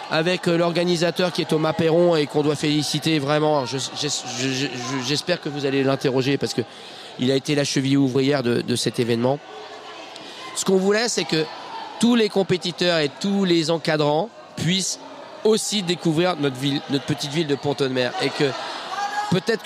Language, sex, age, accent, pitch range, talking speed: French, male, 40-59, French, 140-180 Hz, 180 wpm